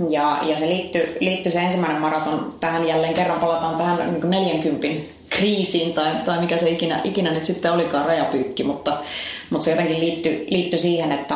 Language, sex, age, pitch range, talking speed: Finnish, female, 30-49, 155-180 Hz, 175 wpm